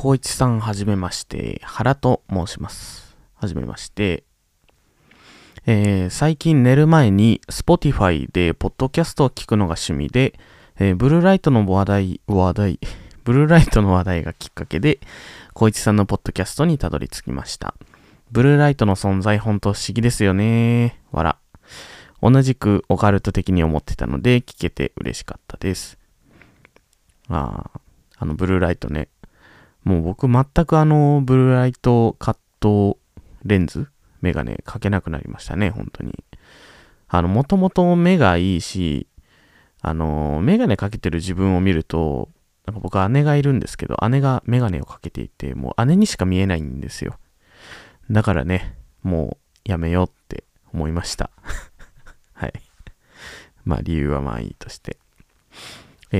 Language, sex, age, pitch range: Japanese, male, 20-39, 90-125 Hz